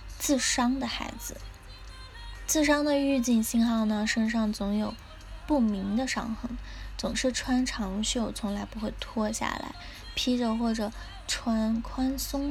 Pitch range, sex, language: 215-255 Hz, female, Chinese